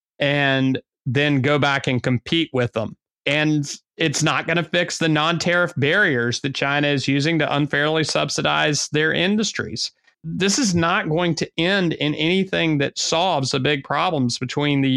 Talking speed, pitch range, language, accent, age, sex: 165 wpm, 130-165 Hz, English, American, 30-49, male